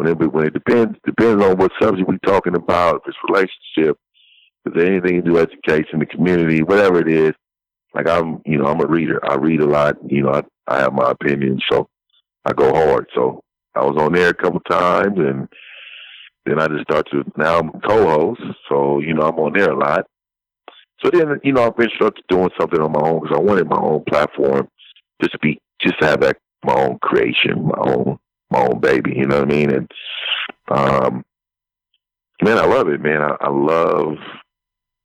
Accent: American